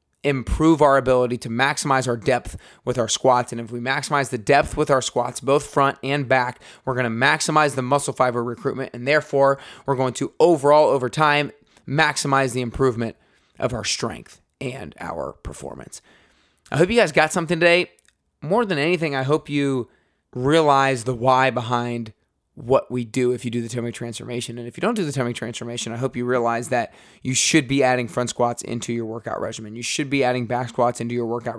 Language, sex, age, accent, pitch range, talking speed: English, male, 20-39, American, 120-145 Hz, 200 wpm